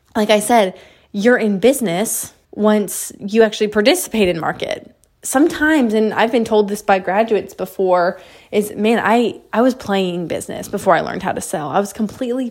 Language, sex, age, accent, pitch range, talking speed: English, female, 20-39, American, 195-240 Hz, 175 wpm